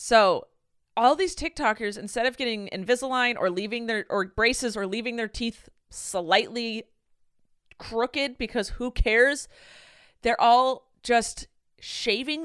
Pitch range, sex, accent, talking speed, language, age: 185-240 Hz, female, American, 125 wpm, English, 30-49